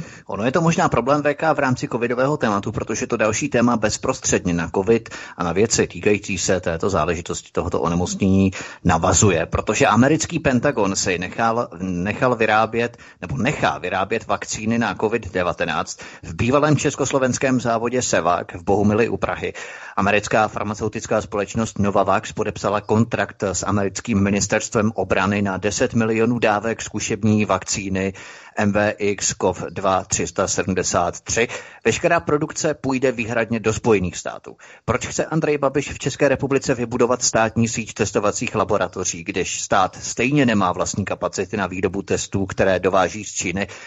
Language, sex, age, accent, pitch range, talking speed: Czech, male, 30-49, native, 100-130 Hz, 135 wpm